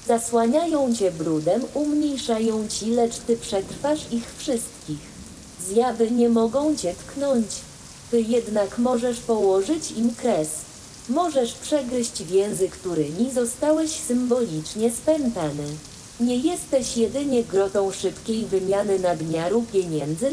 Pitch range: 185-260 Hz